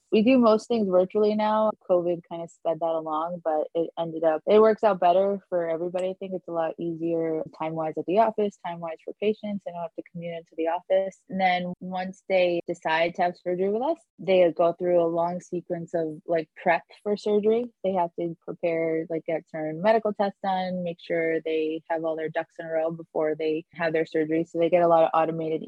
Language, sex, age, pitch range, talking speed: English, female, 20-39, 160-185 Hz, 225 wpm